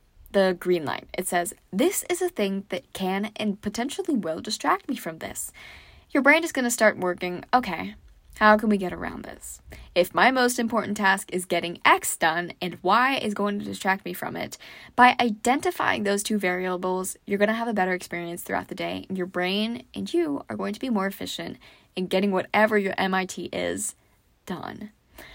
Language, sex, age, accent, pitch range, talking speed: English, female, 10-29, American, 185-240 Hz, 195 wpm